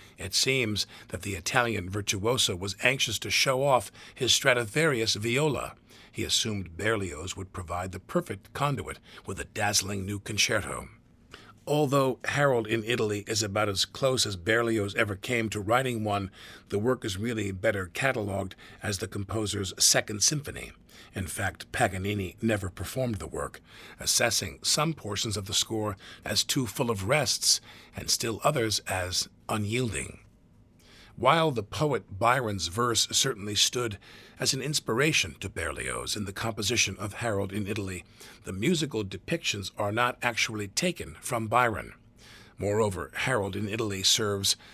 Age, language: 50-69, English